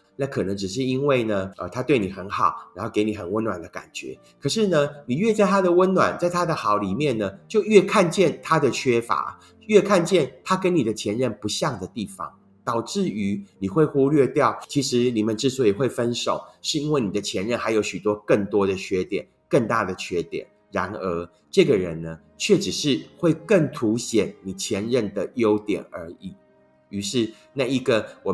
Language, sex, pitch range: Chinese, male, 105-155 Hz